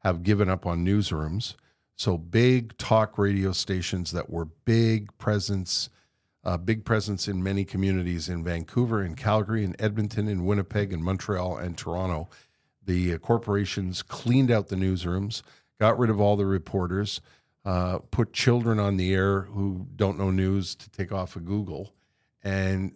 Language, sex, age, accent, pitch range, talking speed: English, male, 50-69, American, 90-110 Hz, 160 wpm